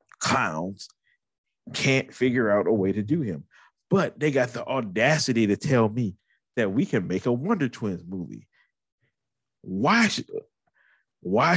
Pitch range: 105-135 Hz